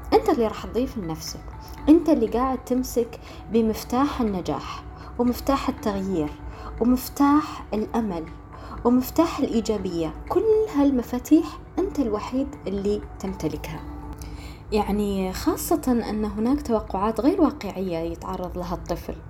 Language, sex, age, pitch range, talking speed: Arabic, female, 20-39, 195-275 Hz, 105 wpm